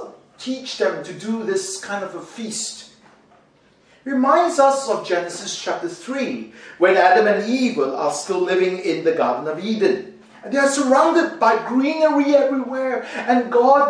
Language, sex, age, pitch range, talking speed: English, male, 40-59, 215-265 Hz, 160 wpm